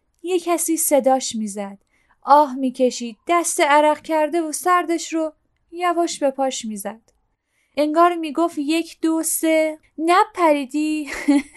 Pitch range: 260-335 Hz